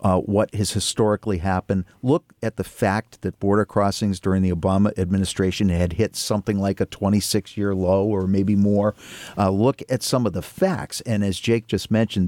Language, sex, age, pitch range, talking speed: English, male, 50-69, 95-115 Hz, 185 wpm